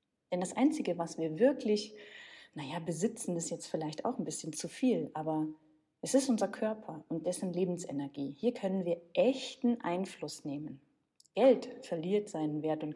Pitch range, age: 165-225 Hz, 40-59